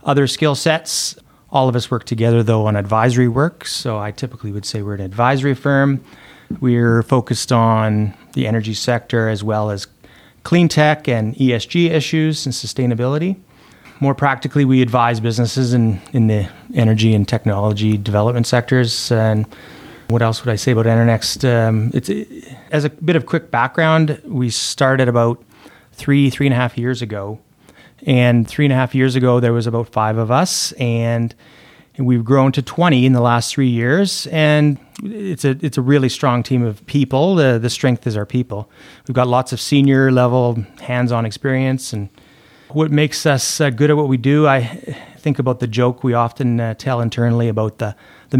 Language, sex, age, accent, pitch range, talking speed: English, male, 30-49, American, 115-135 Hz, 180 wpm